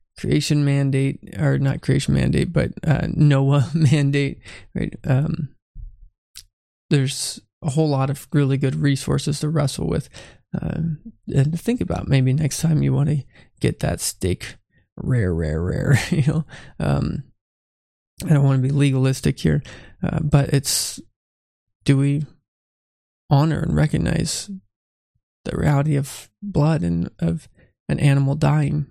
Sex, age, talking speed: male, 20-39, 140 wpm